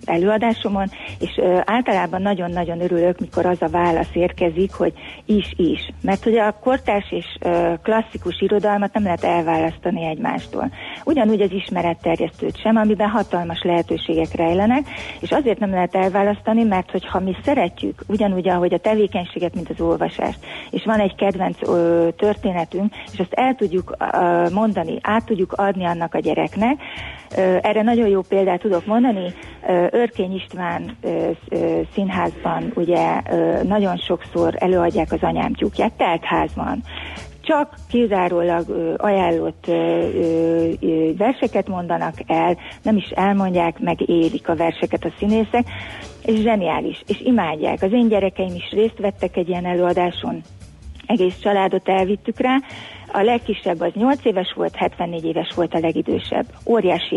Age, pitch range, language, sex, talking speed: 30-49, 170-215 Hz, Hungarian, female, 135 wpm